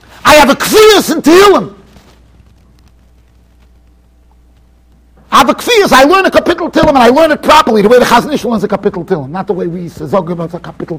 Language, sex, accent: English, male, American